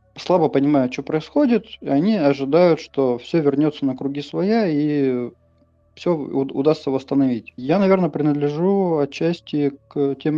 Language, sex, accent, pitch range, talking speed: Russian, male, native, 135-155 Hz, 125 wpm